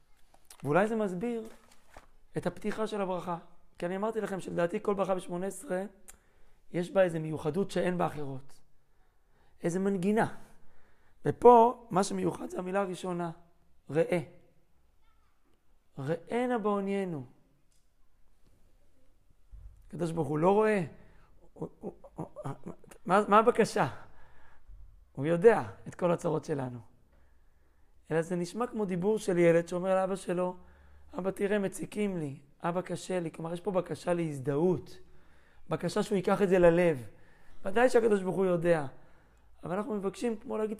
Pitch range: 150-200 Hz